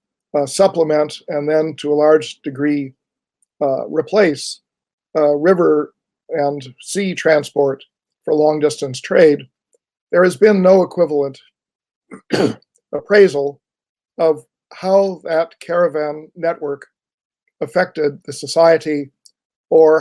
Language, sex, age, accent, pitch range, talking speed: Turkish, male, 50-69, American, 145-175 Hz, 100 wpm